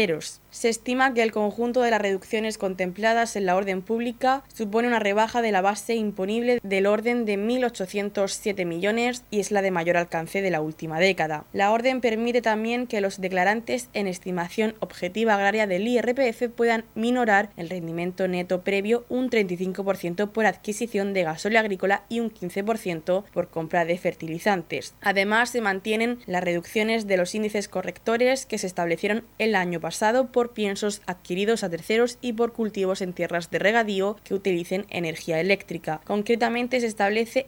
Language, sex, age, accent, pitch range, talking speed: Spanish, female, 20-39, Spanish, 185-230 Hz, 165 wpm